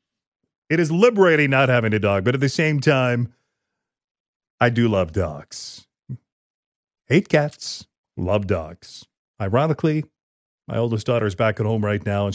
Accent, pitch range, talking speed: American, 105-155 Hz, 150 wpm